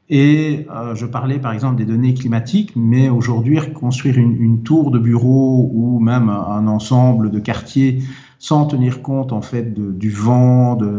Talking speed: 175 wpm